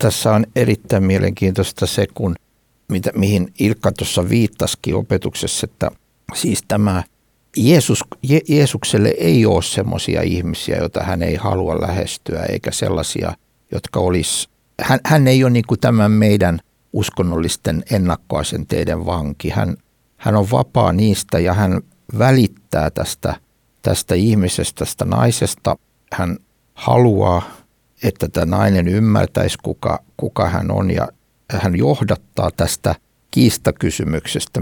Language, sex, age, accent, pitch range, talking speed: Finnish, male, 60-79, native, 90-115 Hz, 120 wpm